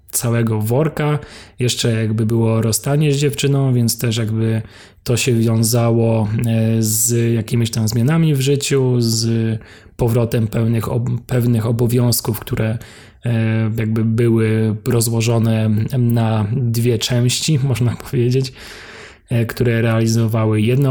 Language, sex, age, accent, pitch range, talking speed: Polish, male, 20-39, native, 110-125 Hz, 110 wpm